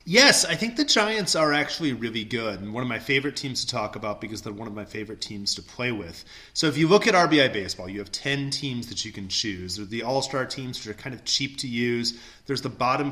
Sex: male